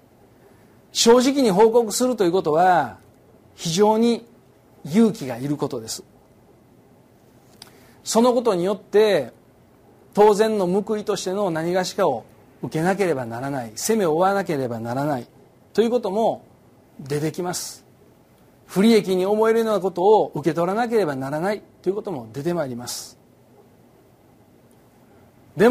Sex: male